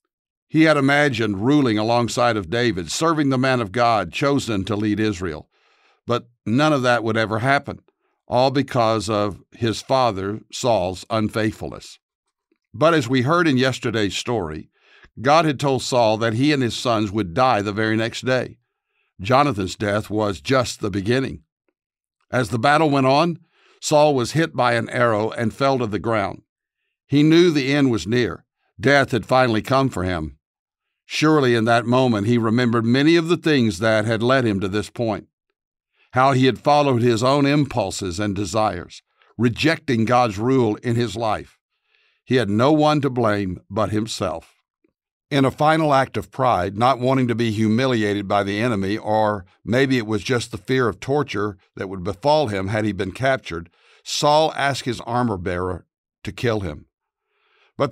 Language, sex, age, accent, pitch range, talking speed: English, male, 60-79, American, 105-135 Hz, 170 wpm